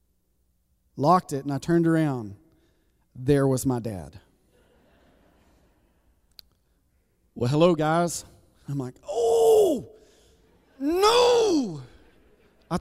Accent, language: American, English